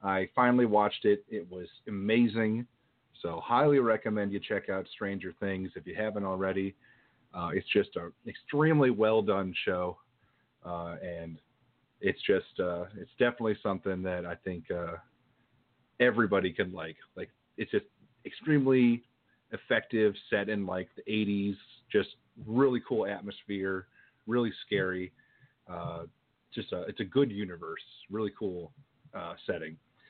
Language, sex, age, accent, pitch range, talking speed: English, male, 30-49, American, 95-120 Hz, 135 wpm